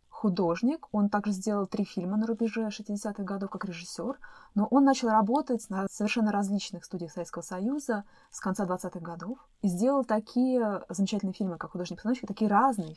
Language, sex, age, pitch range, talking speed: Russian, female, 20-39, 185-225 Hz, 160 wpm